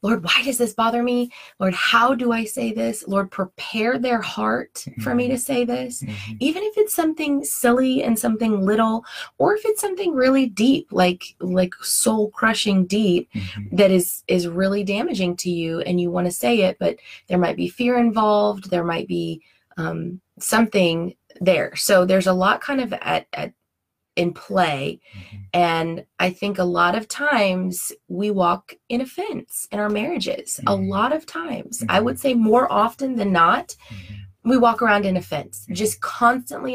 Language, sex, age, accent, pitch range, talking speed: English, female, 20-39, American, 175-235 Hz, 175 wpm